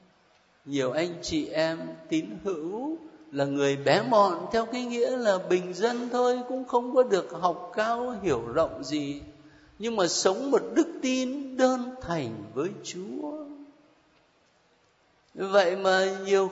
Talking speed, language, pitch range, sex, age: 140 wpm, Vietnamese, 145-235 Hz, male, 60-79